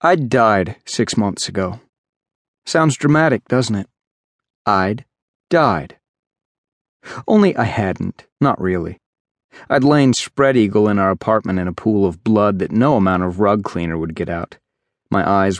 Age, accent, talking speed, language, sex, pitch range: 40-59, American, 150 wpm, English, male, 90-110 Hz